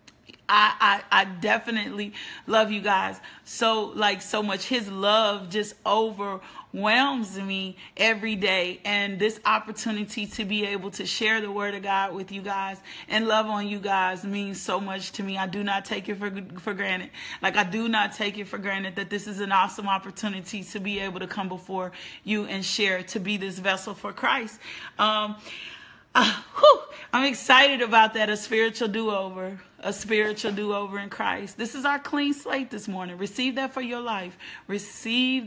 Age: 30-49